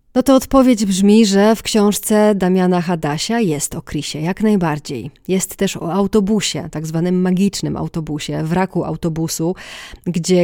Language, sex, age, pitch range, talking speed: Polish, female, 30-49, 165-205 Hz, 145 wpm